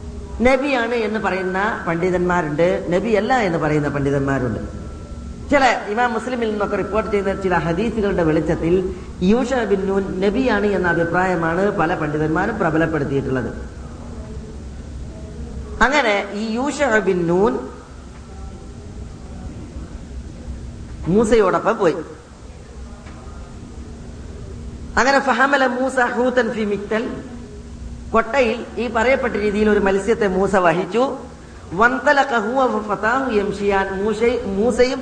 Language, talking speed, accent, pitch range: Malayalam, 60 wpm, native, 135-225 Hz